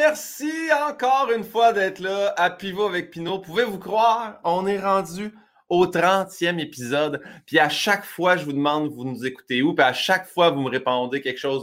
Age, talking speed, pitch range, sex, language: 30-49, 195 wpm, 145-205 Hz, male, French